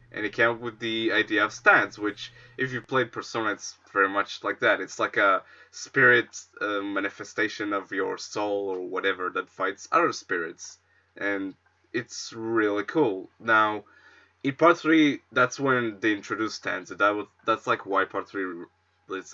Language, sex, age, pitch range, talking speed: English, male, 20-39, 105-155 Hz, 175 wpm